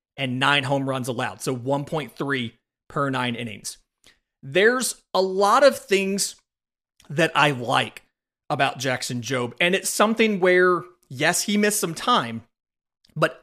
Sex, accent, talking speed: male, American, 140 wpm